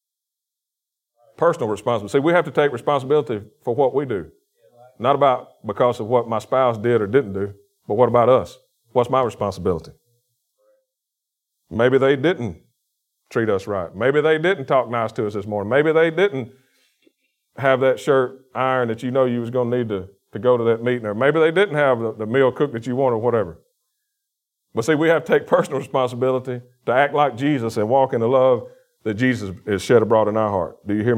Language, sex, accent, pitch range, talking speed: English, male, American, 115-135 Hz, 210 wpm